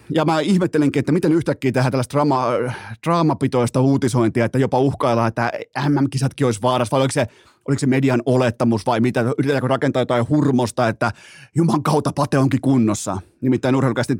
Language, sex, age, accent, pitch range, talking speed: Finnish, male, 30-49, native, 120-150 Hz, 160 wpm